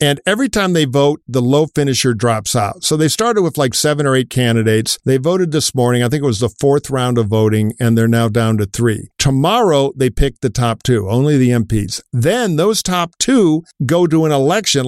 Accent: American